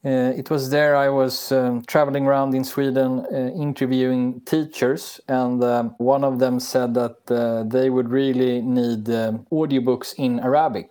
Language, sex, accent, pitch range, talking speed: English, male, Swedish, 125-140 Hz, 165 wpm